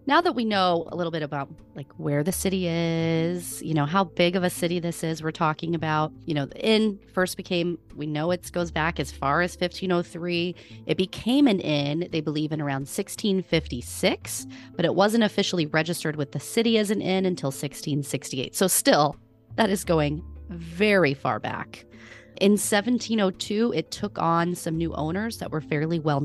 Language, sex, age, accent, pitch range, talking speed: English, female, 30-49, American, 140-175 Hz, 185 wpm